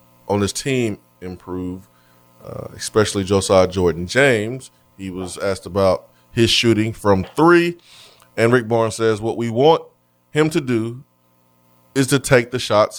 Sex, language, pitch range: male, English, 85-110 Hz